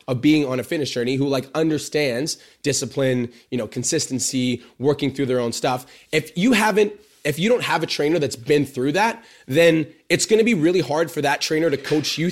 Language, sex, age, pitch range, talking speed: English, male, 20-39, 140-170 Hz, 215 wpm